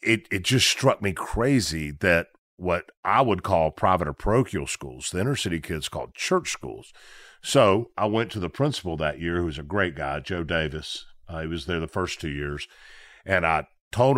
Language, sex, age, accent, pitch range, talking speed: English, male, 50-69, American, 75-95 Hz, 205 wpm